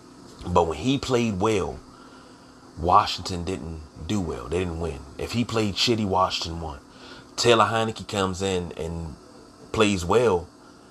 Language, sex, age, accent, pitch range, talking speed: English, male, 30-49, American, 95-115 Hz, 140 wpm